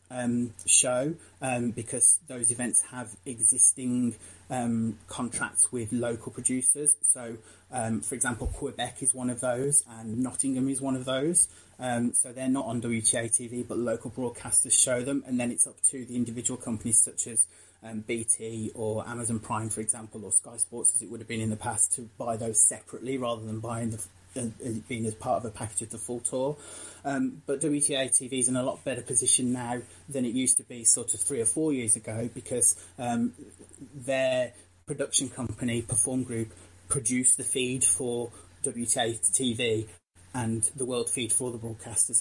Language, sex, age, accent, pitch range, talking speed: English, male, 30-49, British, 110-130 Hz, 185 wpm